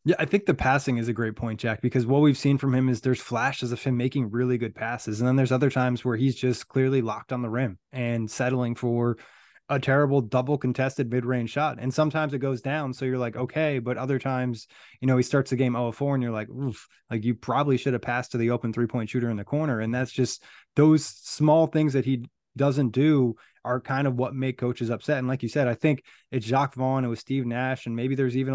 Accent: American